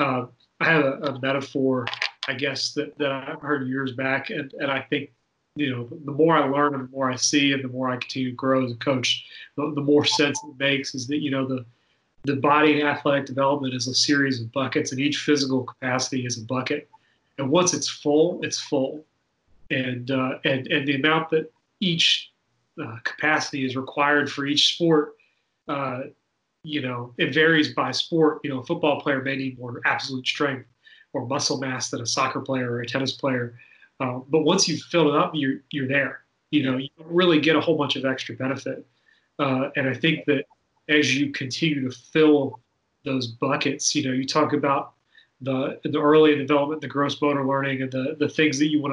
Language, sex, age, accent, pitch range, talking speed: English, male, 30-49, American, 130-150 Hz, 210 wpm